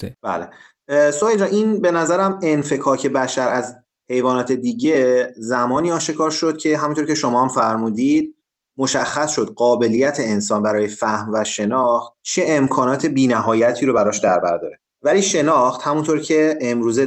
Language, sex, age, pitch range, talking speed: Persian, male, 30-49, 120-155 Hz, 135 wpm